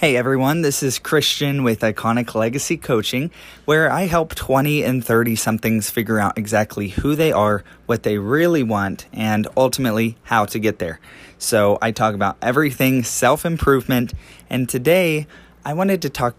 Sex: male